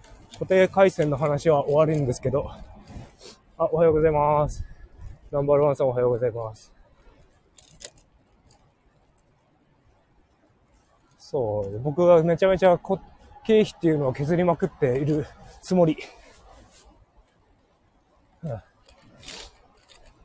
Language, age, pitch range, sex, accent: Japanese, 20-39, 120-165 Hz, male, native